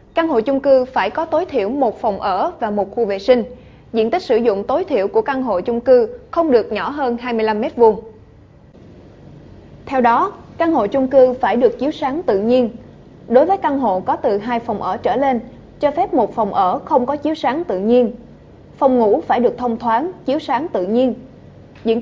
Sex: female